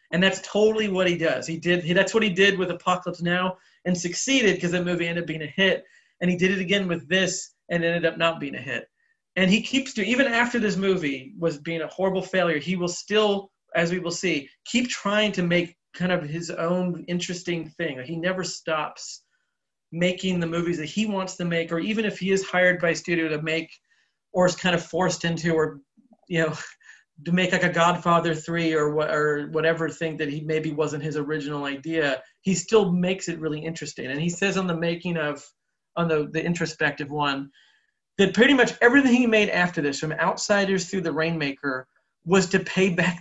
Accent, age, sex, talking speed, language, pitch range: American, 30-49, male, 210 wpm, English, 160-190 Hz